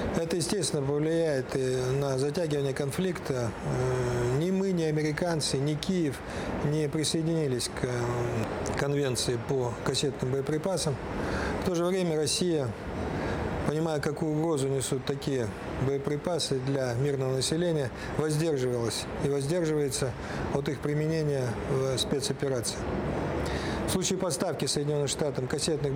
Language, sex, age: Russian, male, 40-59